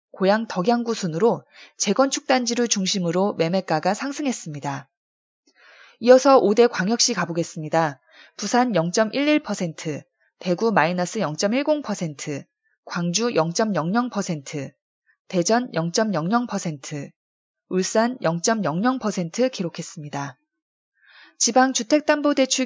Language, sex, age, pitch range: Korean, female, 20-39, 170-245 Hz